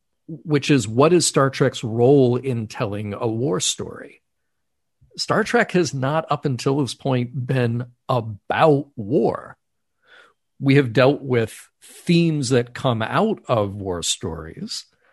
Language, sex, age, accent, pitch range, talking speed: English, male, 50-69, American, 115-145 Hz, 135 wpm